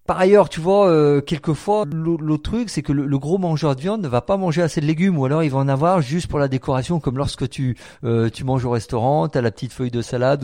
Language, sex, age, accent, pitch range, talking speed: French, male, 50-69, French, 115-145 Hz, 275 wpm